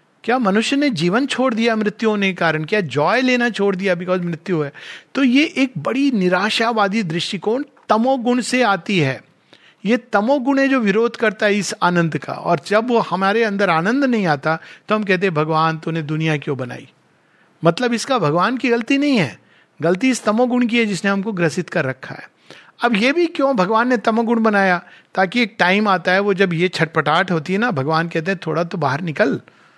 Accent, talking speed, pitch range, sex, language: native, 200 wpm, 155-225 Hz, male, Hindi